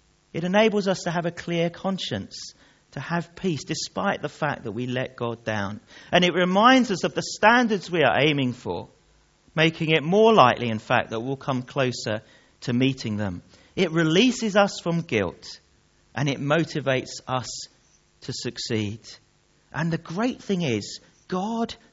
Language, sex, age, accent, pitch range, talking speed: English, male, 40-59, British, 135-205 Hz, 165 wpm